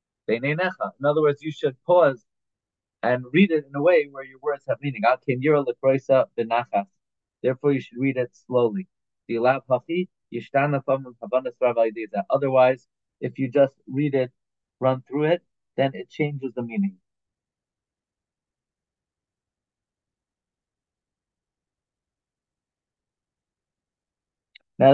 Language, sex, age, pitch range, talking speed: English, male, 30-49, 125-155 Hz, 90 wpm